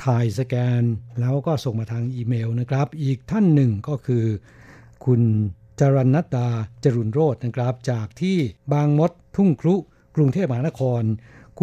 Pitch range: 120-145 Hz